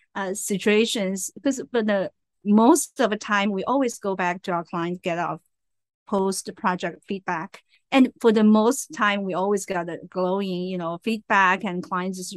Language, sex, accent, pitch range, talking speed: English, female, Chinese, 185-225 Hz, 180 wpm